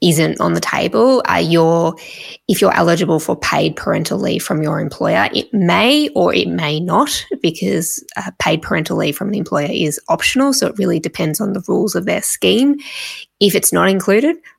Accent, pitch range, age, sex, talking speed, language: Australian, 155-205 Hz, 20-39, female, 185 wpm, English